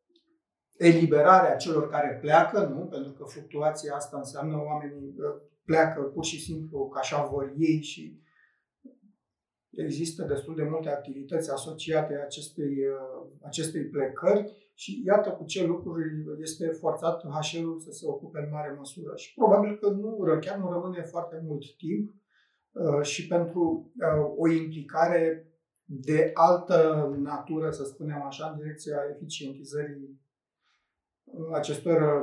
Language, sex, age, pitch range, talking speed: Romanian, male, 30-49, 145-175 Hz, 125 wpm